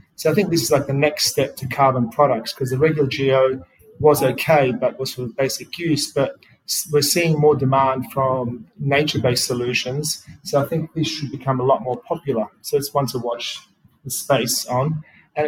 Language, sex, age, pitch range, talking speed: English, male, 30-49, 130-150 Hz, 195 wpm